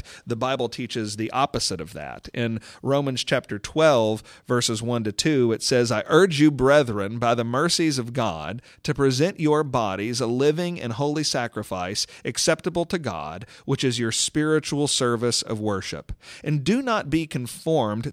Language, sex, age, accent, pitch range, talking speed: English, male, 40-59, American, 115-150 Hz, 165 wpm